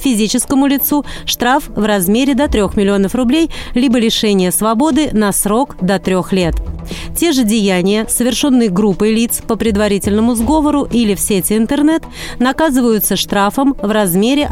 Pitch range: 200-255 Hz